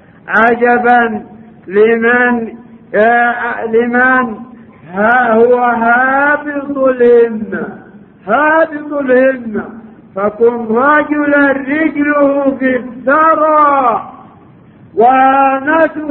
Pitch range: 230-310 Hz